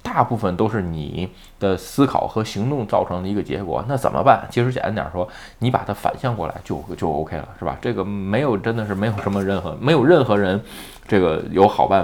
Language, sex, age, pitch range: Chinese, male, 20-39, 85-110 Hz